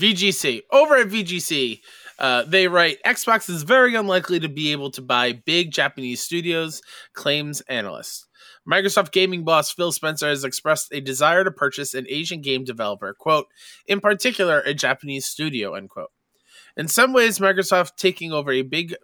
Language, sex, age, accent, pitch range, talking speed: English, male, 20-39, American, 135-185 Hz, 165 wpm